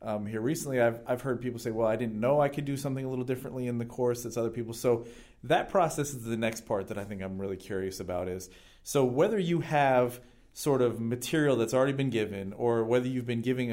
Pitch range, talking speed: 110-135 Hz, 245 wpm